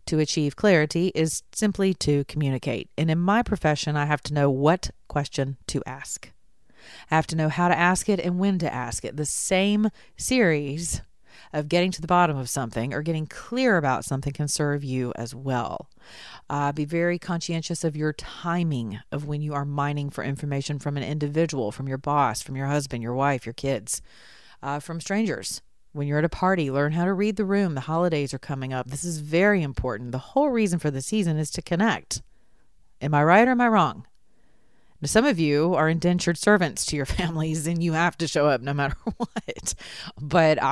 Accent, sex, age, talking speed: American, female, 40-59, 200 wpm